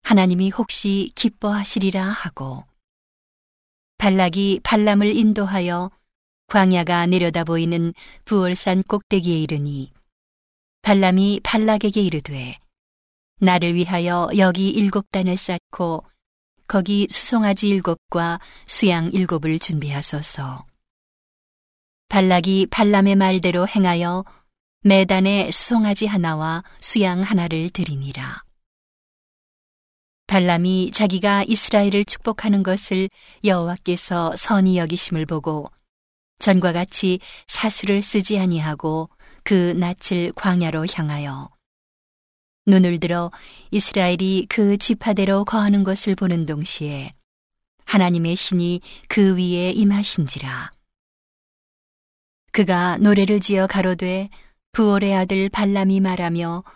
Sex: female